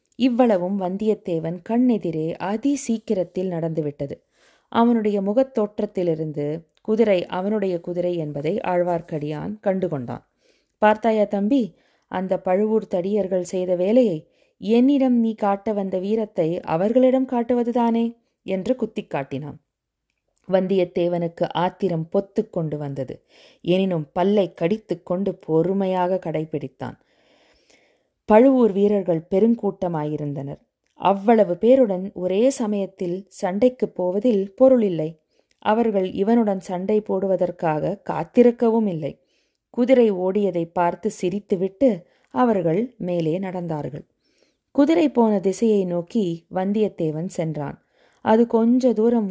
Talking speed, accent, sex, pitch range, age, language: 90 wpm, native, female, 175-220 Hz, 20-39, Tamil